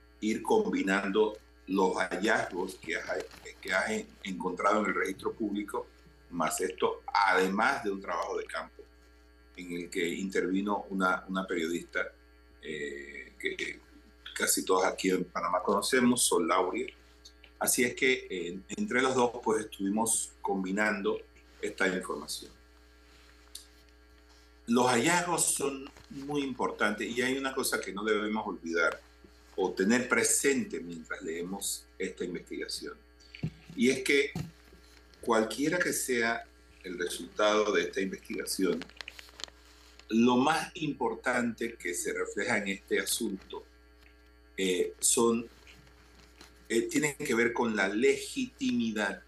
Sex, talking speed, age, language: male, 120 wpm, 50-69, Spanish